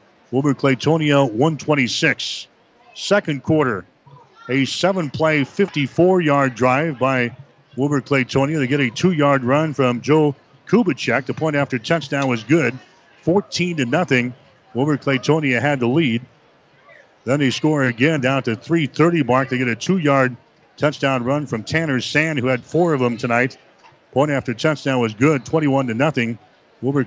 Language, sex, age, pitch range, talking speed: English, male, 50-69, 125-155 Hz, 145 wpm